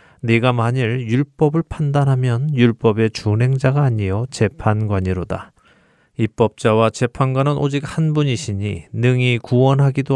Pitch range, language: 105-130 Hz, Korean